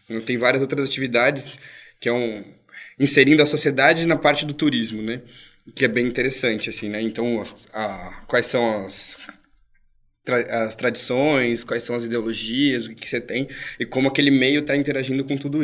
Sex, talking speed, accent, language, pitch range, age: male, 175 wpm, Brazilian, Portuguese, 120-140 Hz, 20-39